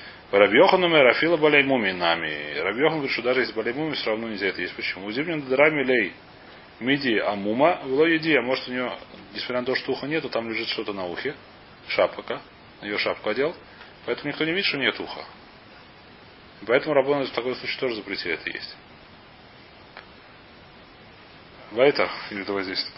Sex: male